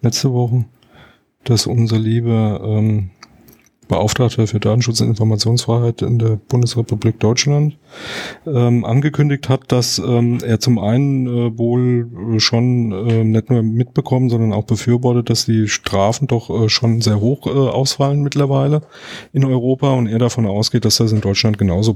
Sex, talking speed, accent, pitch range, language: male, 150 wpm, German, 110-125 Hz, German